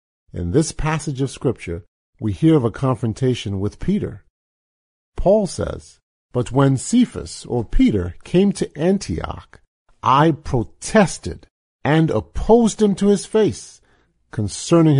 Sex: male